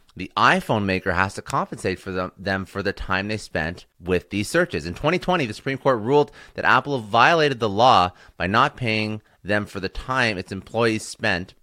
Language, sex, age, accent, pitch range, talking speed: English, male, 30-49, American, 95-115 Hz, 195 wpm